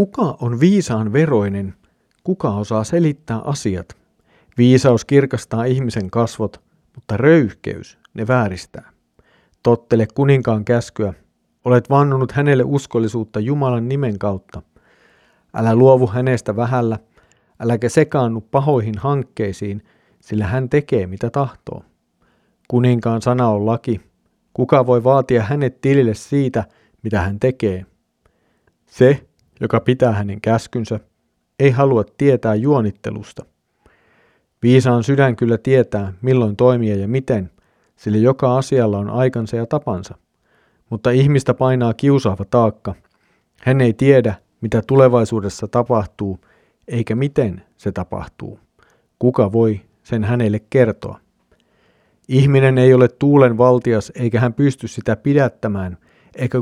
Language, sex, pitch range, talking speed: Finnish, male, 105-130 Hz, 115 wpm